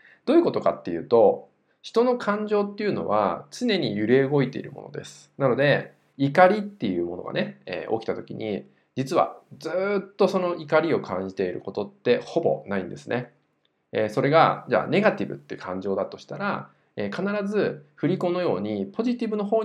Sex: male